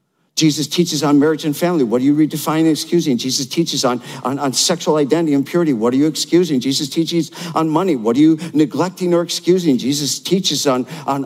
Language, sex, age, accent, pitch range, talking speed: English, male, 50-69, American, 135-175 Hz, 210 wpm